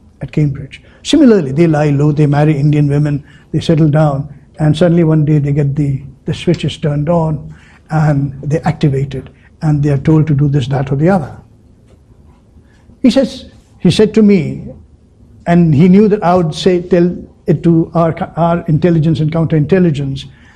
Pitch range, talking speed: 140-195 Hz, 170 wpm